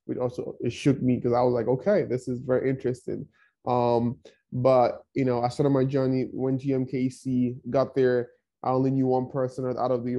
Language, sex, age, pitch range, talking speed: English, male, 20-39, 120-130 Hz, 200 wpm